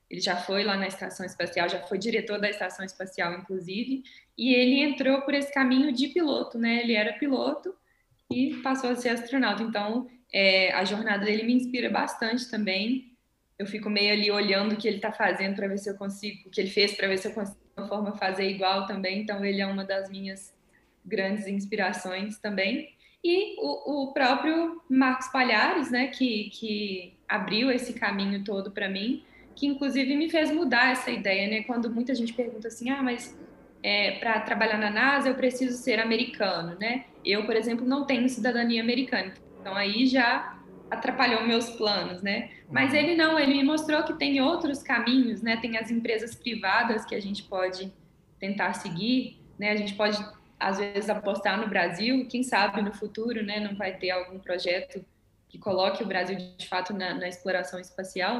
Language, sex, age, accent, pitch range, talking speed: Portuguese, female, 10-29, Brazilian, 195-255 Hz, 190 wpm